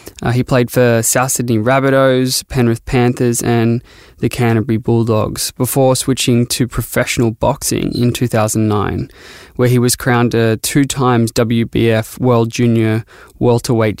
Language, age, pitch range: English, 20-39, 115-125 Hz